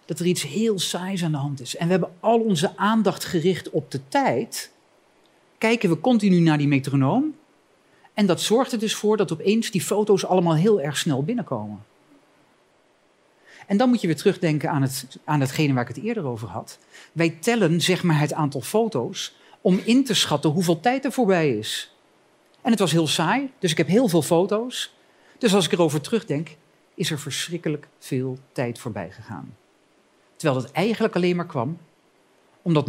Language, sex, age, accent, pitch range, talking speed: Dutch, male, 40-59, Dutch, 145-210 Hz, 185 wpm